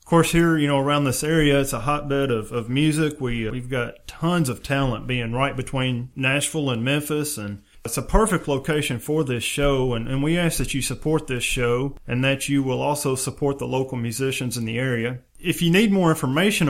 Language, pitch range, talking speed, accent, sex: English, 120-145 Hz, 215 wpm, American, male